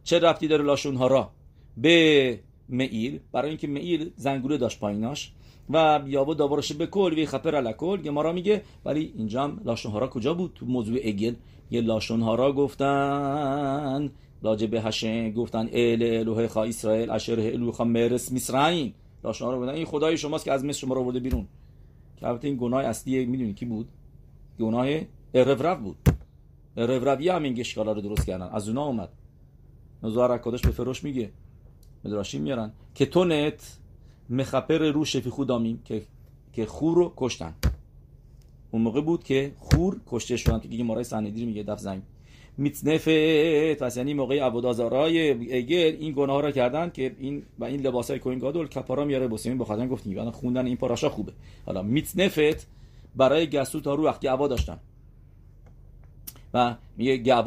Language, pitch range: English, 115-145 Hz